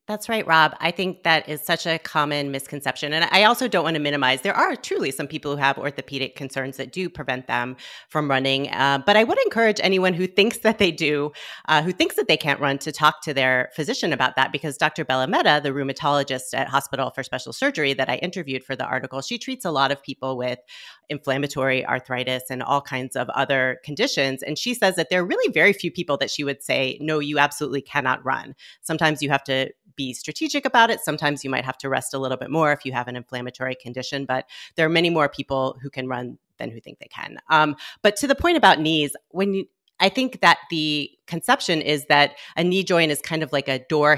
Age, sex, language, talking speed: 30-49, female, English, 235 wpm